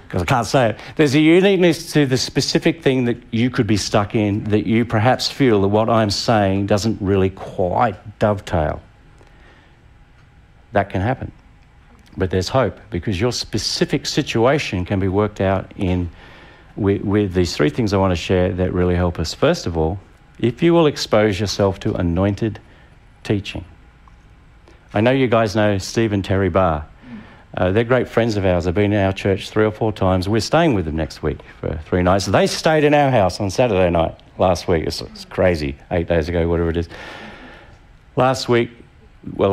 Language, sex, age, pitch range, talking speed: English, male, 50-69, 95-120 Hz, 190 wpm